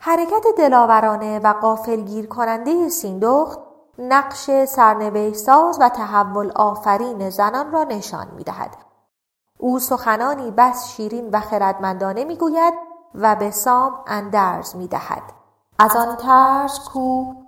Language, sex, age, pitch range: Persian, female, 30-49, 210-260 Hz